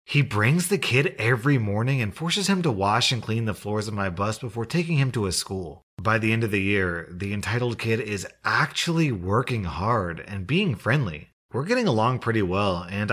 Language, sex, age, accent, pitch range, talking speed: English, male, 30-49, American, 95-125 Hz, 210 wpm